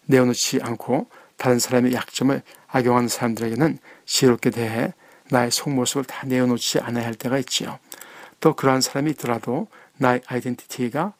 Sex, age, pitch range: male, 60-79, 120-140 Hz